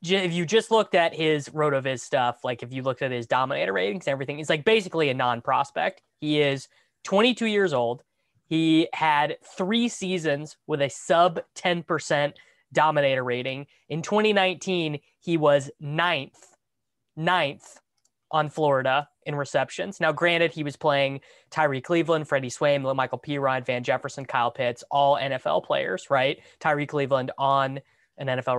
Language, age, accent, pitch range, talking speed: English, 20-39, American, 130-175 Hz, 150 wpm